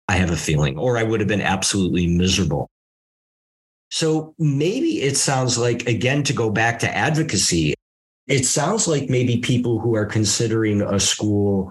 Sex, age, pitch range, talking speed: male, 50-69, 100-140 Hz, 165 wpm